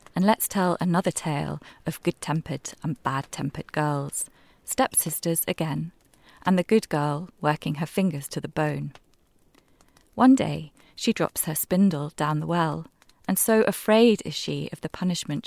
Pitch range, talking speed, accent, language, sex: 150-190 Hz, 150 wpm, British, English, female